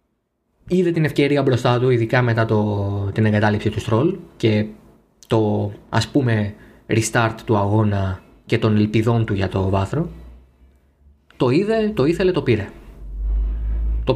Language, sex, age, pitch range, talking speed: Greek, male, 20-39, 105-140 Hz, 140 wpm